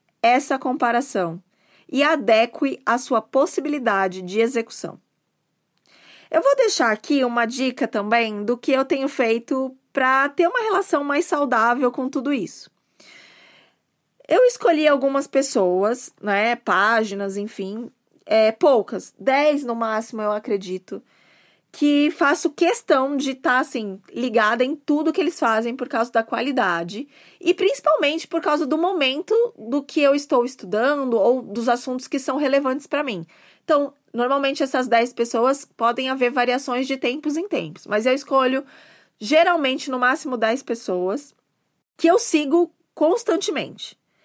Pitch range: 235-295 Hz